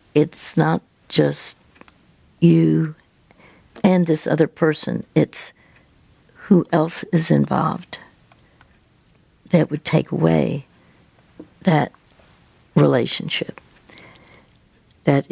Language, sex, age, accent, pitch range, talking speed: English, female, 60-79, American, 130-170 Hz, 80 wpm